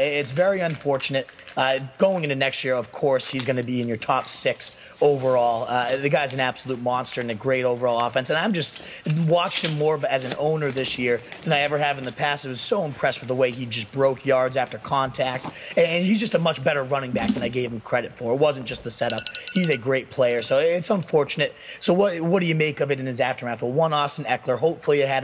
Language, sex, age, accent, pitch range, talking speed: English, male, 30-49, American, 125-150 Hz, 250 wpm